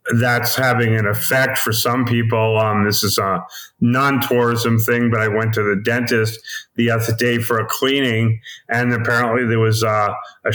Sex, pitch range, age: male, 110-125 Hz, 30-49